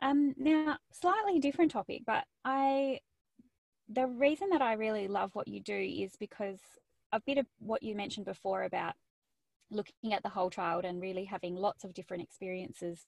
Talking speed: 175 wpm